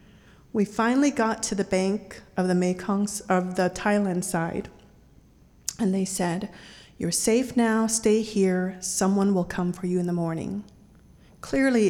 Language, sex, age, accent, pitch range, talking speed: English, female, 40-59, American, 180-210 Hz, 150 wpm